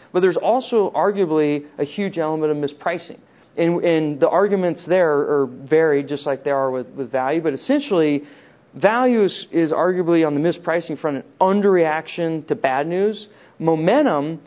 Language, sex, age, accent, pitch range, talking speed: English, male, 40-59, American, 145-185 Hz, 160 wpm